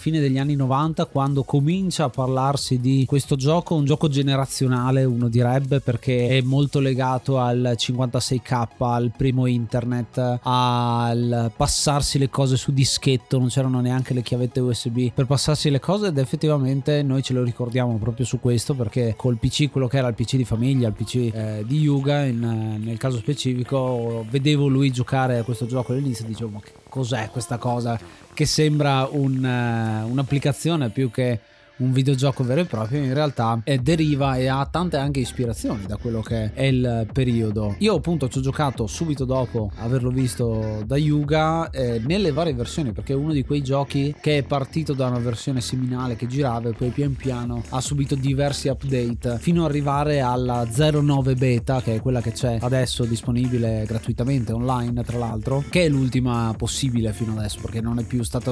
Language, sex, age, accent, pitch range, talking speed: Italian, male, 30-49, native, 120-140 Hz, 175 wpm